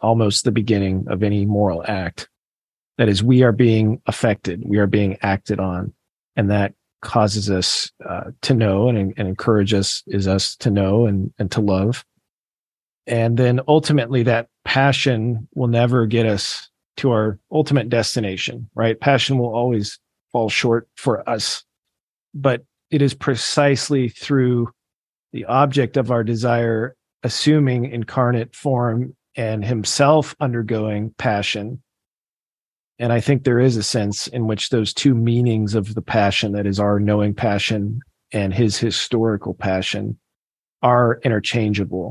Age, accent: 40-59, American